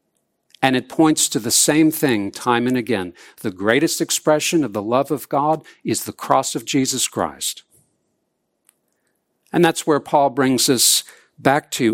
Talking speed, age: 160 wpm, 60-79